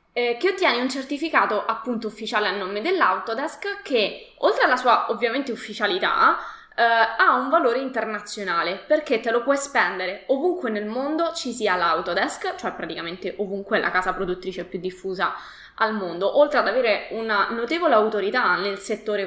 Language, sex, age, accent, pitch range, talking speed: Italian, female, 20-39, native, 205-260 Hz, 155 wpm